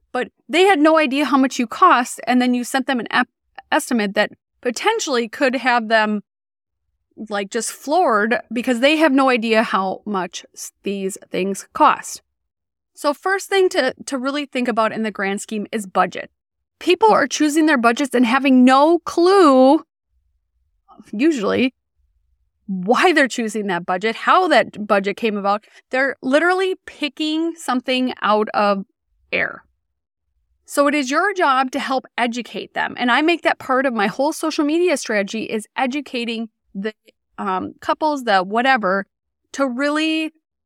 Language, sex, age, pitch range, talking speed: English, female, 20-39, 215-290 Hz, 155 wpm